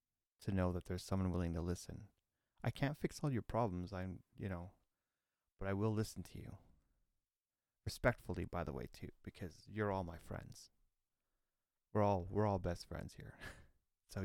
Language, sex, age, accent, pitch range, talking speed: English, male, 30-49, American, 90-110 Hz, 175 wpm